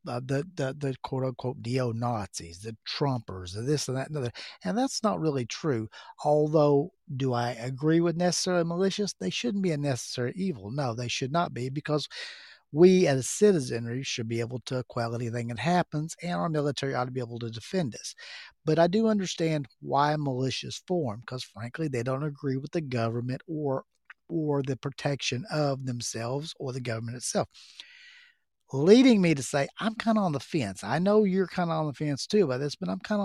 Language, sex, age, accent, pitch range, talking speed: English, male, 50-69, American, 125-170 Hz, 200 wpm